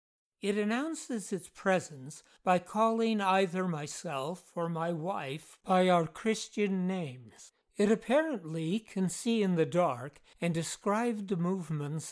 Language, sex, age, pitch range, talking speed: English, male, 60-79, 160-200 Hz, 130 wpm